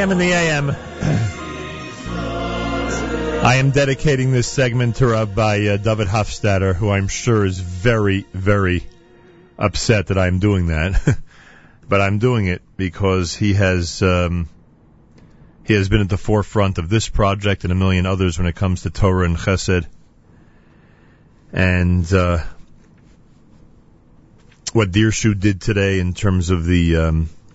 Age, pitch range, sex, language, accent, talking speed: 40-59, 90-110 Hz, male, English, American, 135 wpm